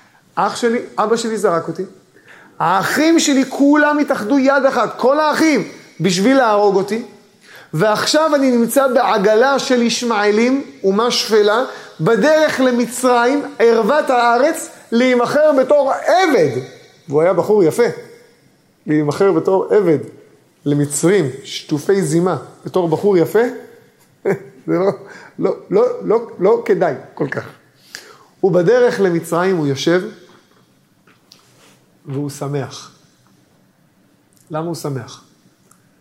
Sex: male